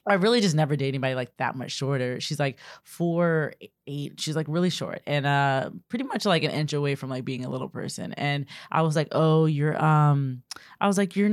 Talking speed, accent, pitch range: 230 wpm, American, 145-195 Hz